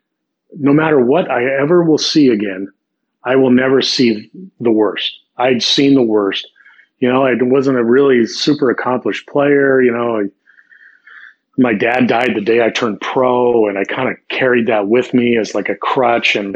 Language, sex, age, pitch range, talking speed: English, male, 30-49, 115-150 Hz, 180 wpm